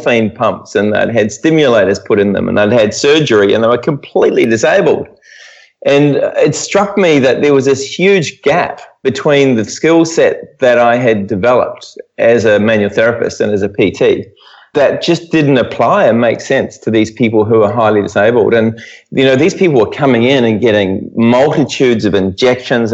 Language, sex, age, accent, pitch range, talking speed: English, male, 30-49, Australian, 110-150 Hz, 185 wpm